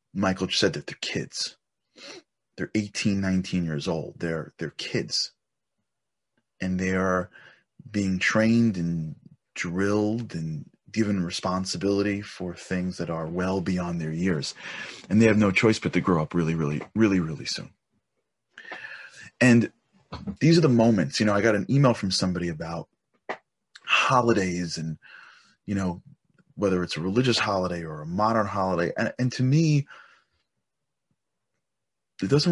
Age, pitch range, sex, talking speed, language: 30-49, 90-110 Hz, male, 140 wpm, English